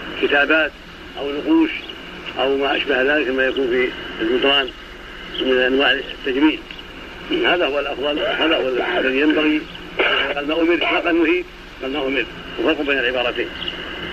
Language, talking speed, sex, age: Arabic, 125 wpm, male, 70-89